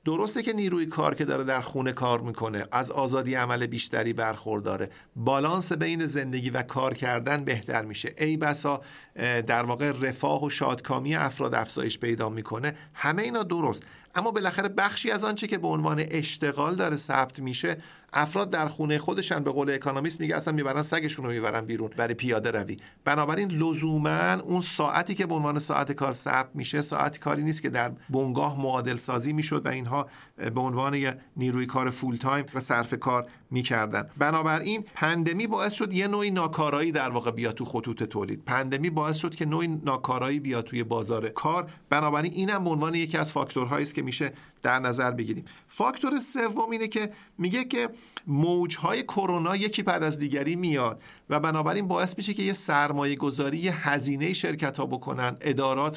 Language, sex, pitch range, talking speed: Persian, male, 130-165 Hz, 175 wpm